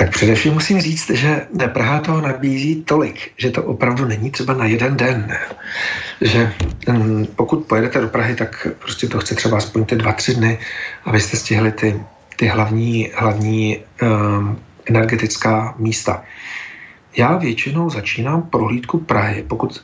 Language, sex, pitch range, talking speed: Slovak, male, 110-140 Hz, 135 wpm